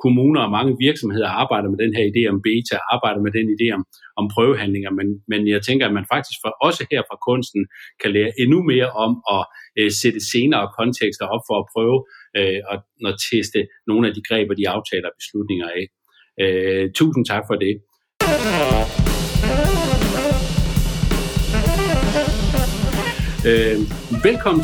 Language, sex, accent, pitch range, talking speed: Danish, male, native, 105-145 Hz, 140 wpm